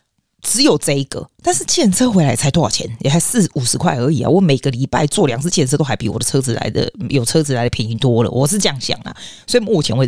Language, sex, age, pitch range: Chinese, female, 30-49, 130-180 Hz